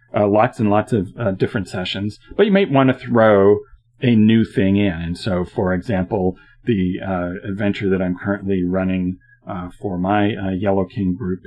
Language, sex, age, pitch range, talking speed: English, male, 40-59, 95-120 Hz, 190 wpm